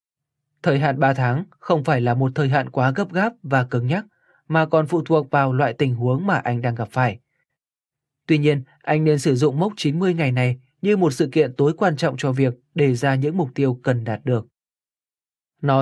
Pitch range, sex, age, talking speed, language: 135-160 Hz, male, 20-39, 215 wpm, Vietnamese